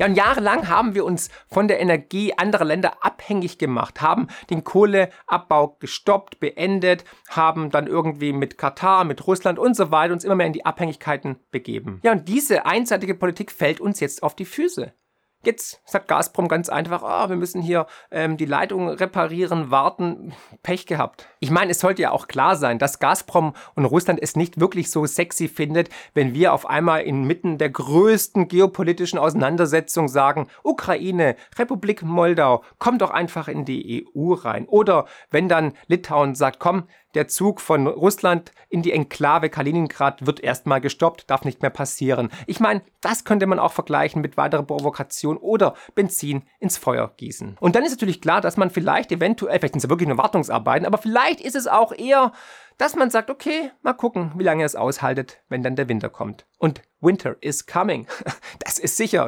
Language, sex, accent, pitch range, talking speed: German, male, German, 150-195 Hz, 180 wpm